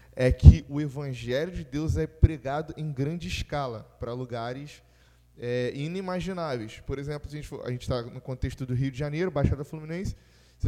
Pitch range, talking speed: 120-155 Hz, 180 wpm